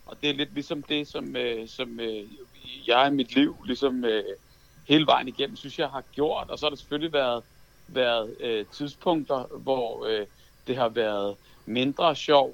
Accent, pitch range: native, 125-155 Hz